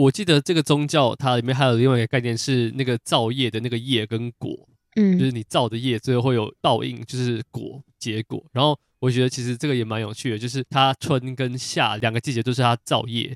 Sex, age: male, 20-39